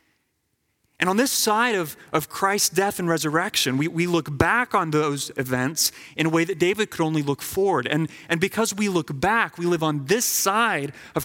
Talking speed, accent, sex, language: 205 wpm, American, male, English